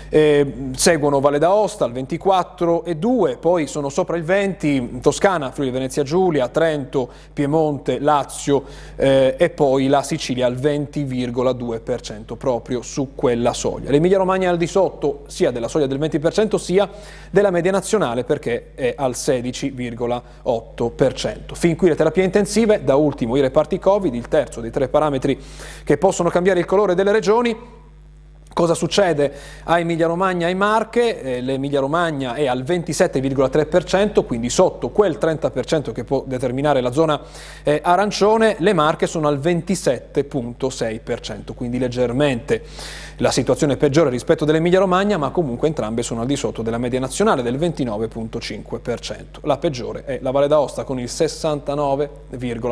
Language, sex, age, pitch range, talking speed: Italian, male, 30-49, 130-175 Hz, 145 wpm